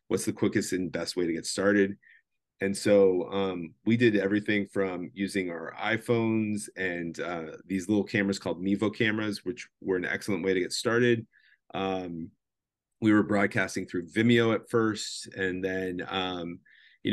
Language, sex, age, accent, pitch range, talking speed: English, male, 30-49, American, 90-100 Hz, 165 wpm